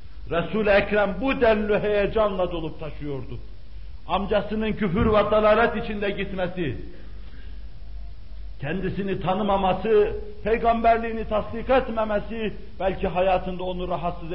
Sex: male